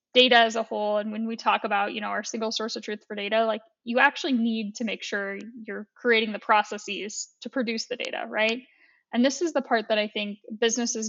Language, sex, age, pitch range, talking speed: English, female, 10-29, 210-245 Hz, 235 wpm